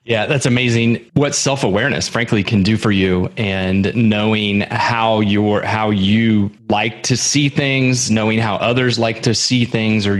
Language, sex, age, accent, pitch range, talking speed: English, male, 30-49, American, 105-125 Hz, 165 wpm